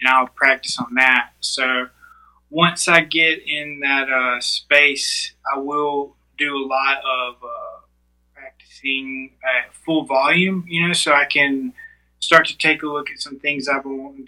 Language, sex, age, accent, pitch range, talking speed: English, male, 20-39, American, 120-145 Hz, 170 wpm